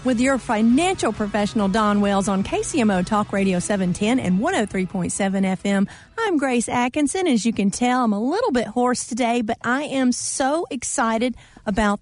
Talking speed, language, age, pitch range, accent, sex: 165 wpm, English, 40-59, 205-260 Hz, American, female